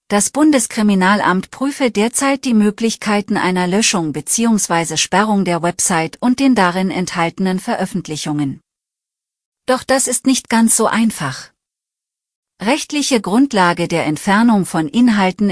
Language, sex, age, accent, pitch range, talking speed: German, female, 40-59, German, 180-225 Hz, 115 wpm